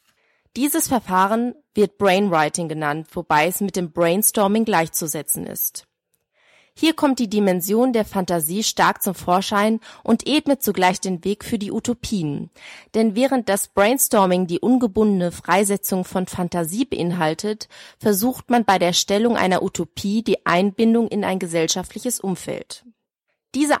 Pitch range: 185-235 Hz